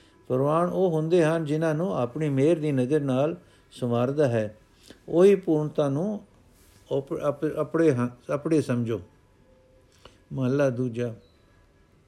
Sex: male